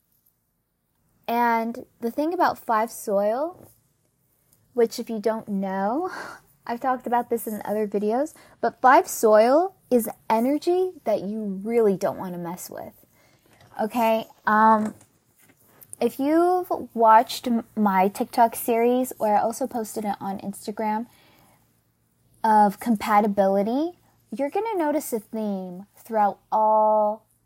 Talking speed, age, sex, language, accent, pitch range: 120 wpm, 10-29, female, English, American, 210-265 Hz